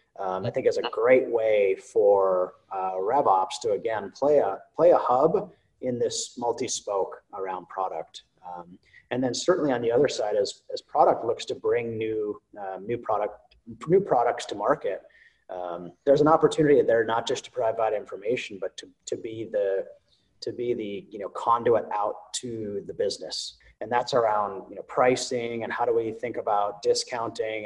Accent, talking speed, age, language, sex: American, 180 wpm, 30-49, English, male